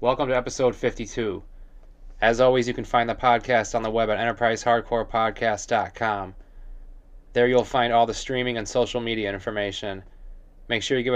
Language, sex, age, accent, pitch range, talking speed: English, male, 20-39, American, 110-130 Hz, 160 wpm